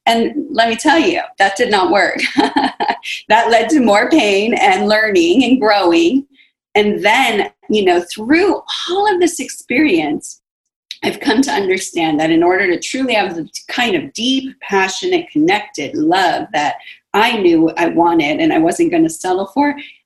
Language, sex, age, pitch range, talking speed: English, female, 30-49, 210-340 Hz, 165 wpm